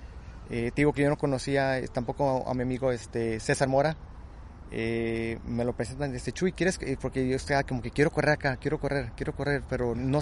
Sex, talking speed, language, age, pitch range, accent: male, 225 wpm, Spanish, 30-49, 115-145 Hz, Mexican